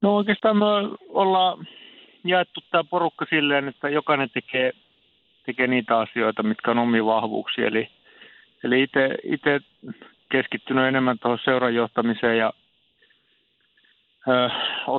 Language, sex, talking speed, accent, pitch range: Finnish, male, 110 wpm, native, 115-140 Hz